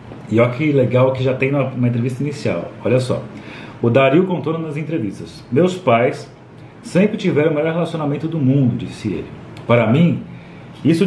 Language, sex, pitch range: Portuguese, male, 115-160 Hz